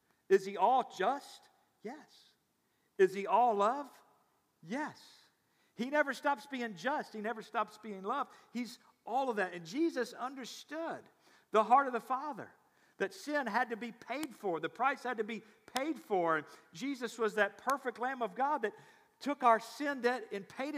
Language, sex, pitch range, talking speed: English, male, 200-255 Hz, 175 wpm